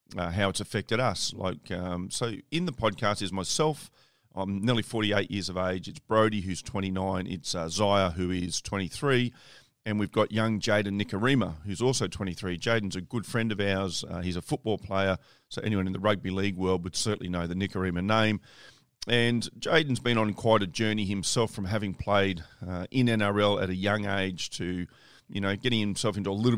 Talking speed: 200 wpm